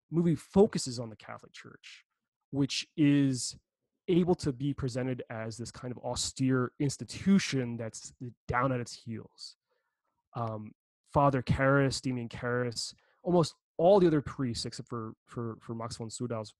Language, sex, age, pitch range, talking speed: English, male, 20-39, 115-145 Hz, 150 wpm